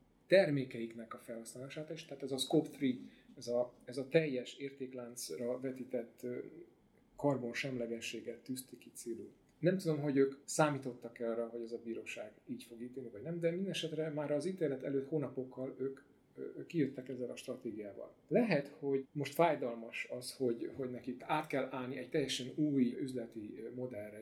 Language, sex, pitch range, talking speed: Hungarian, male, 120-145 Hz, 165 wpm